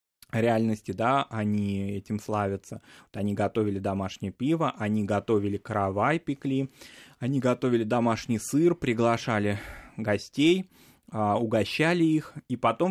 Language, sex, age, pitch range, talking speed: Russian, male, 20-39, 110-145 Hz, 110 wpm